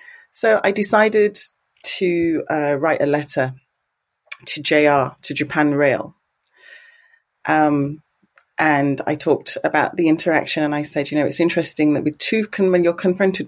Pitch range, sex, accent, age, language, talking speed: 145-195 Hz, female, British, 30-49, English, 145 wpm